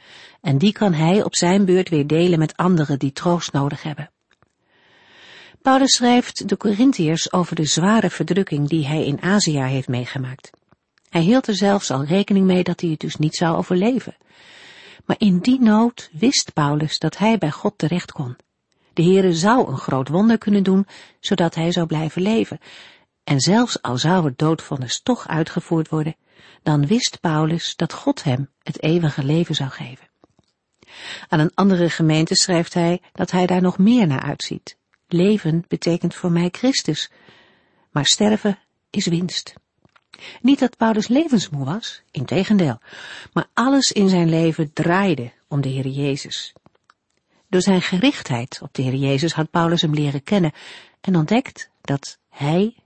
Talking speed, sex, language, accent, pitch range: 165 wpm, female, Dutch, Dutch, 155-200 Hz